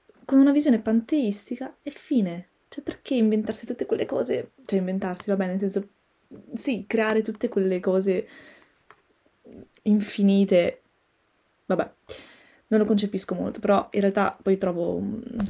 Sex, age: female, 20-39